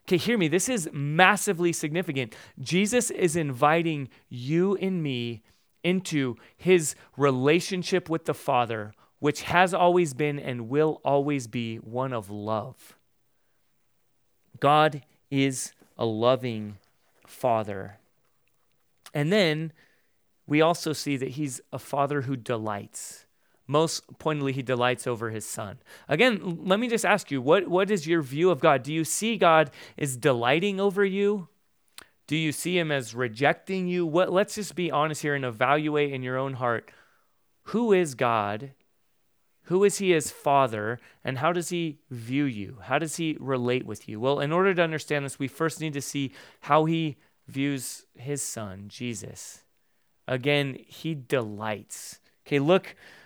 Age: 30-49